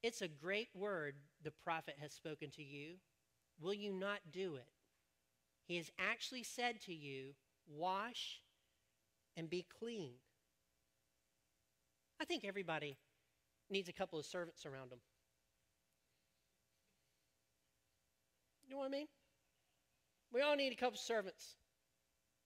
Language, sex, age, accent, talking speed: English, male, 40-59, American, 125 wpm